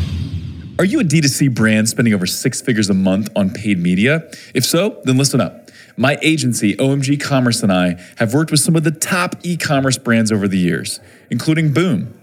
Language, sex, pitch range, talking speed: English, male, 120-170 Hz, 190 wpm